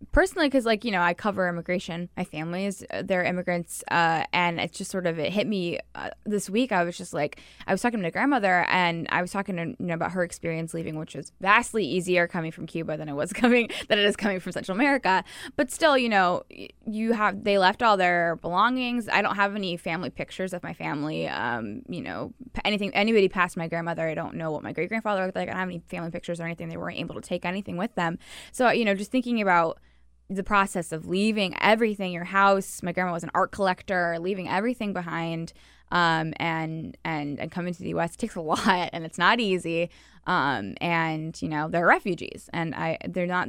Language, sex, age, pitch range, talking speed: English, female, 10-29, 170-200 Hz, 225 wpm